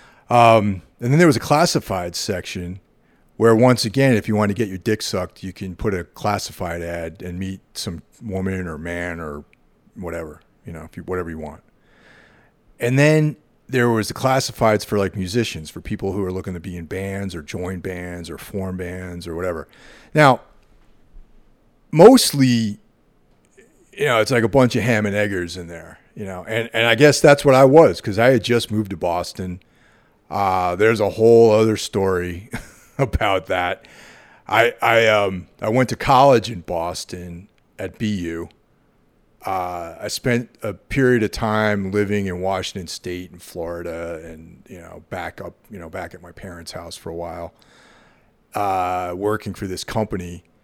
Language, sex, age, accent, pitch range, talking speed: English, male, 40-59, American, 90-115 Hz, 175 wpm